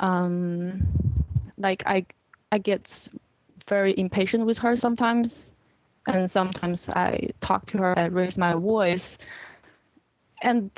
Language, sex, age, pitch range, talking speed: English, female, 20-39, 180-215 Hz, 115 wpm